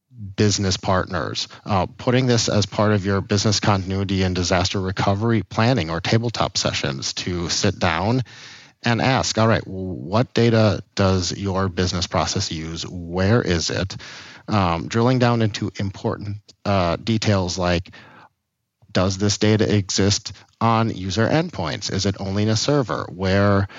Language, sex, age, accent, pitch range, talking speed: English, male, 40-59, American, 95-110 Hz, 145 wpm